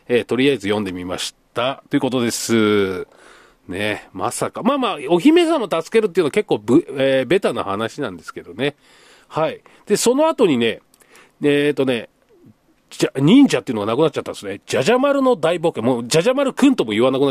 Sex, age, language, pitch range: male, 40-59, Japanese, 135-225 Hz